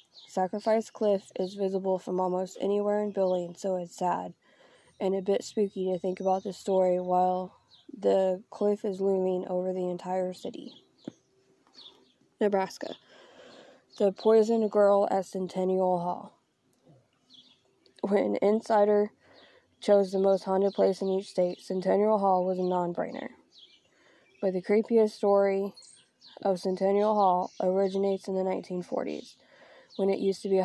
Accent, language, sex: American, English, female